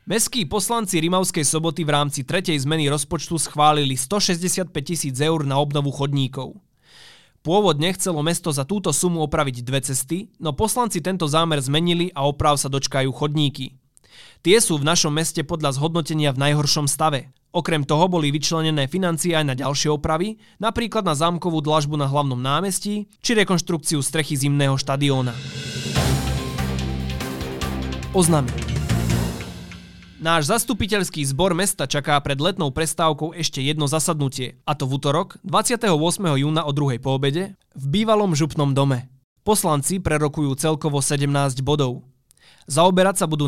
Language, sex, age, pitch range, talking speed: Slovak, male, 20-39, 135-170 Hz, 135 wpm